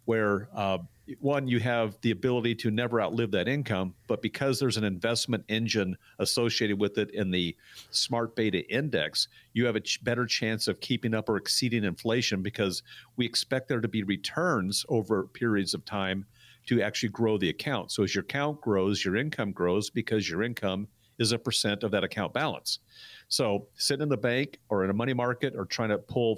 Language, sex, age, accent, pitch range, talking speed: English, male, 50-69, American, 100-120 Hz, 195 wpm